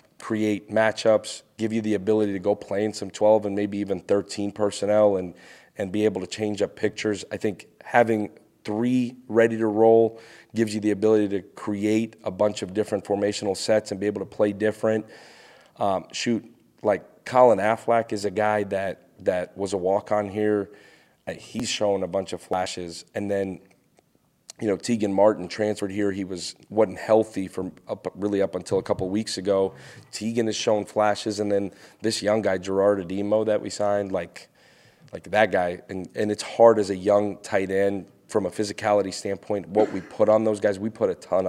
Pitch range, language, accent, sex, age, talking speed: 95-110 Hz, English, American, male, 40-59, 195 wpm